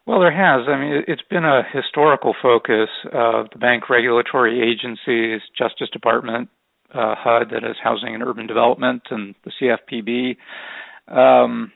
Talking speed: 150 wpm